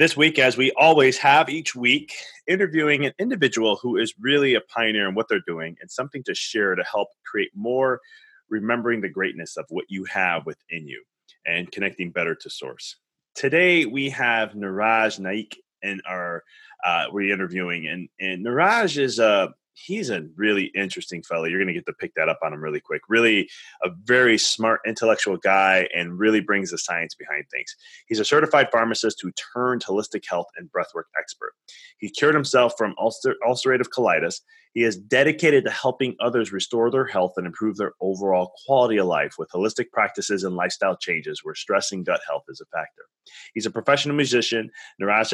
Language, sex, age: English, male, 30-49